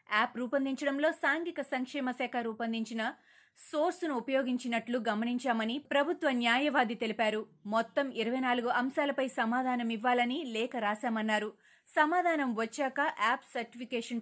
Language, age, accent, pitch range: Telugu, 20-39, native, 225-270 Hz